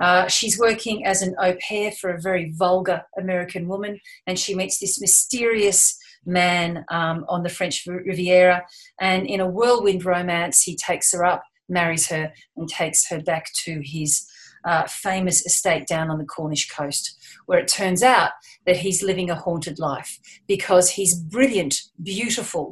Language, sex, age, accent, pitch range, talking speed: English, female, 40-59, Australian, 175-205 Hz, 165 wpm